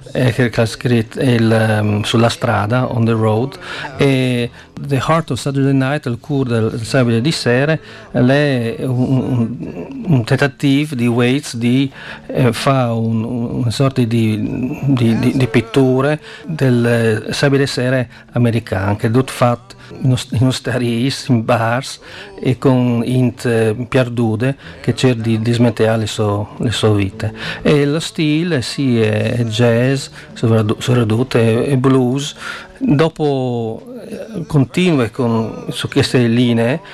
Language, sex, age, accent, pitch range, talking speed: Italian, male, 50-69, native, 115-135 Hz, 130 wpm